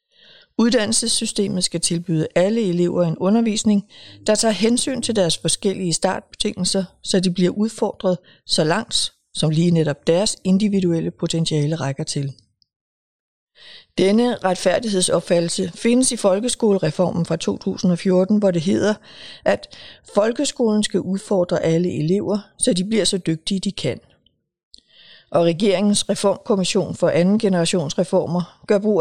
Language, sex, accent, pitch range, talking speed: Danish, female, native, 170-215 Hz, 120 wpm